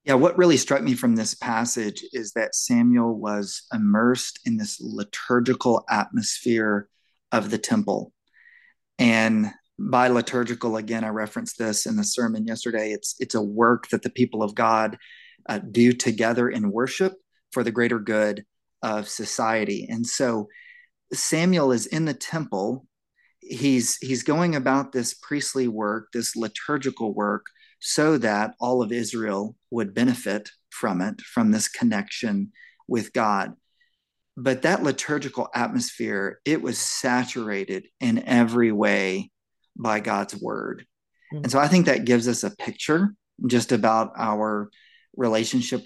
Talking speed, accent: 140 wpm, American